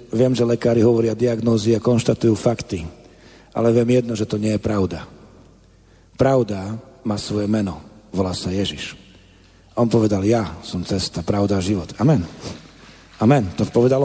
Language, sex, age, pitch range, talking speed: Slovak, male, 40-59, 105-135 Hz, 150 wpm